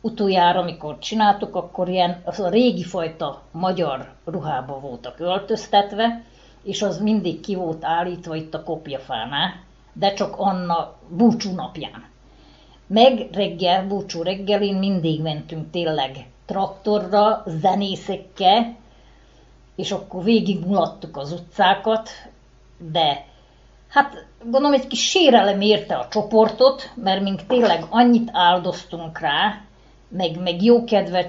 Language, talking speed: Hungarian, 115 wpm